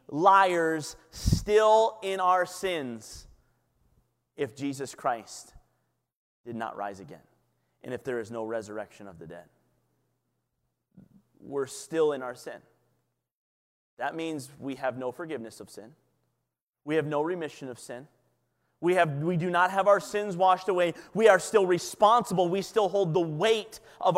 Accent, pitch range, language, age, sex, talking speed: American, 125-205 Hz, English, 30-49, male, 145 wpm